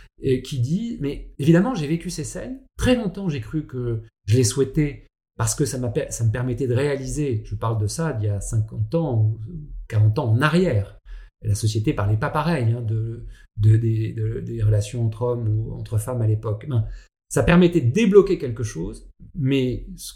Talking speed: 210 wpm